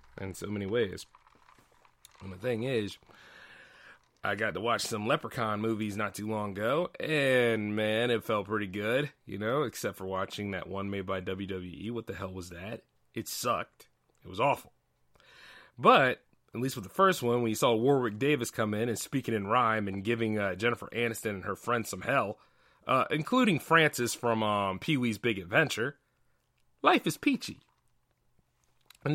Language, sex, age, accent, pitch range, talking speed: English, male, 30-49, American, 100-140 Hz, 175 wpm